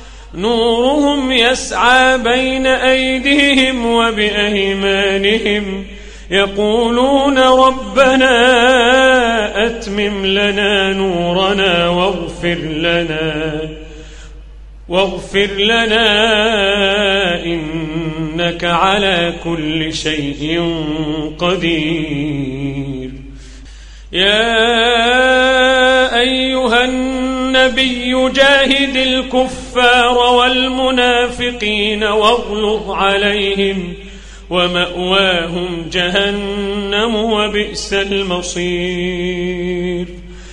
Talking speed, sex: 45 wpm, male